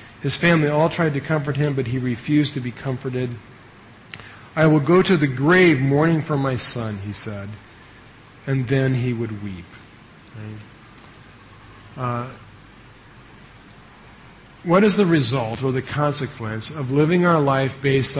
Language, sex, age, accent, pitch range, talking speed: English, male, 40-59, American, 115-150 Hz, 140 wpm